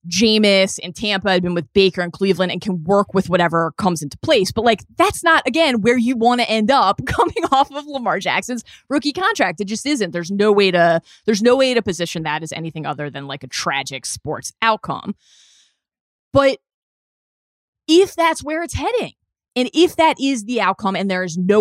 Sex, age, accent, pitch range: female, 20-39, American, 165-235 Hz